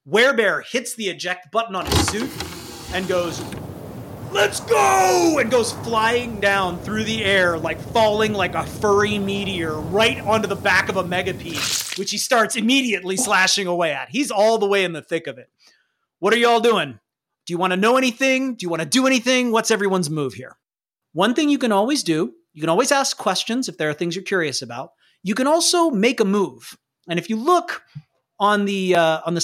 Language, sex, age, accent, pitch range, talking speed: English, male, 30-49, American, 165-225 Hz, 205 wpm